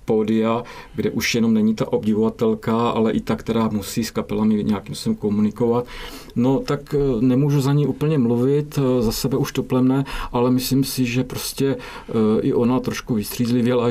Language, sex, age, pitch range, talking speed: English, male, 50-69, 105-125 Hz, 165 wpm